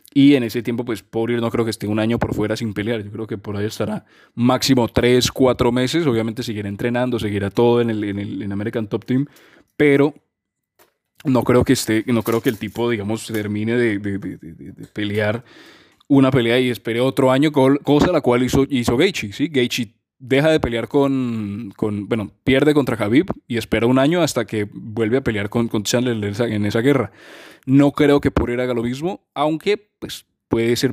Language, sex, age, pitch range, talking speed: Spanish, male, 20-39, 110-135 Hz, 210 wpm